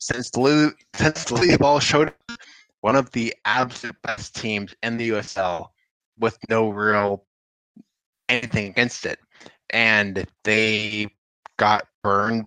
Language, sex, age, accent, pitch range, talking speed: English, male, 20-39, American, 100-120 Hz, 120 wpm